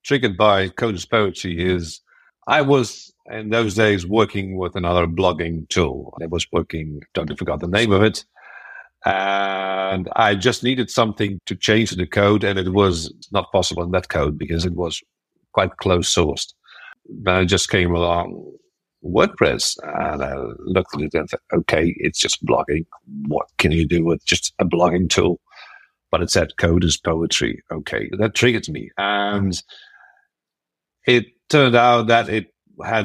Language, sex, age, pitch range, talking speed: English, male, 50-69, 90-115 Hz, 165 wpm